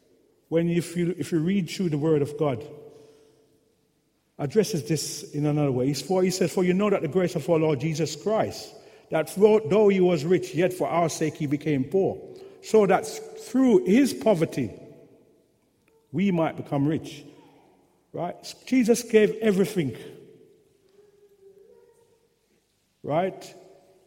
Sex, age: male, 50-69